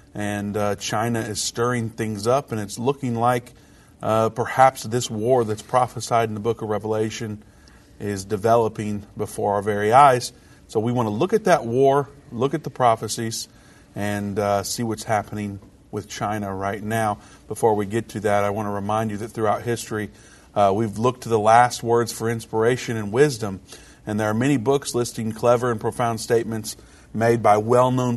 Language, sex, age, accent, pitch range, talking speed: English, male, 40-59, American, 105-120 Hz, 185 wpm